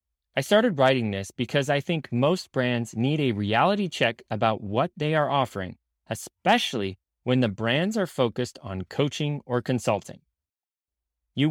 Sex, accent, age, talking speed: male, American, 30-49, 150 wpm